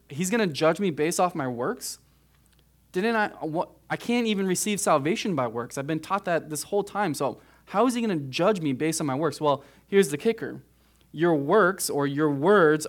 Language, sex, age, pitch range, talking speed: English, male, 20-39, 130-160 Hz, 220 wpm